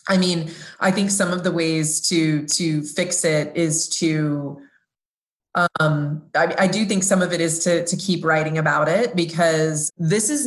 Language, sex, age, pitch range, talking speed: English, female, 20-39, 155-190 Hz, 185 wpm